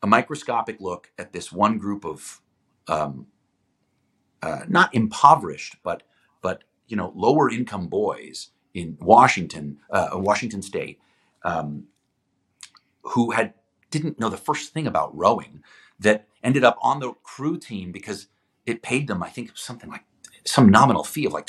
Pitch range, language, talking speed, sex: 95-120 Hz, English, 150 wpm, male